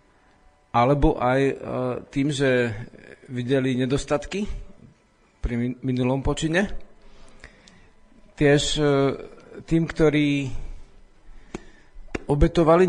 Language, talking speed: Slovak, 60 wpm